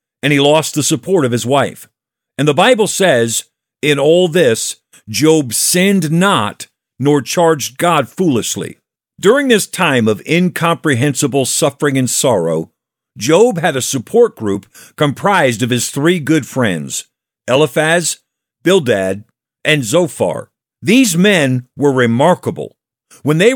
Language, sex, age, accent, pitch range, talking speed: English, male, 50-69, American, 130-175 Hz, 130 wpm